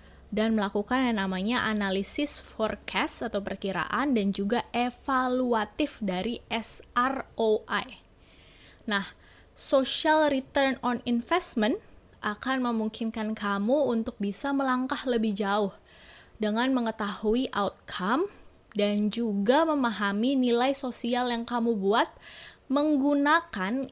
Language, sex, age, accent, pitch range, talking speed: English, female, 20-39, Indonesian, 200-255 Hz, 95 wpm